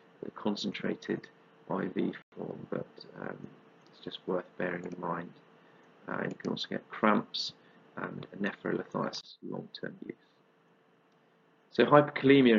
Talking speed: 125 wpm